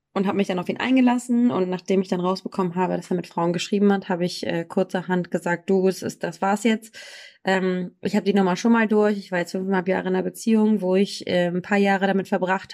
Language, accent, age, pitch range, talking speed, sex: German, German, 20-39, 185-220 Hz, 255 wpm, female